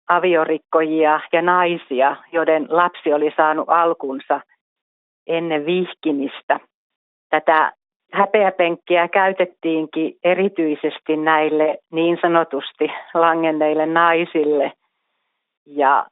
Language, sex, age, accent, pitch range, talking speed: Finnish, female, 40-59, native, 155-180 Hz, 75 wpm